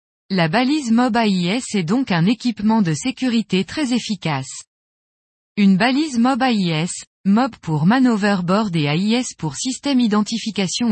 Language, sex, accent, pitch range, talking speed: French, female, French, 185-250 Hz, 130 wpm